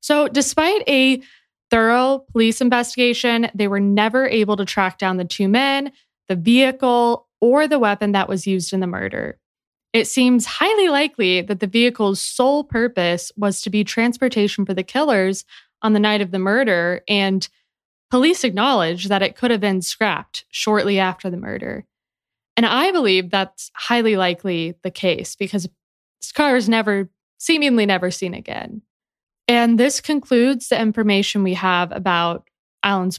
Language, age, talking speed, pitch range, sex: English, 20-39, 160 wpm, 190-245 Hz, female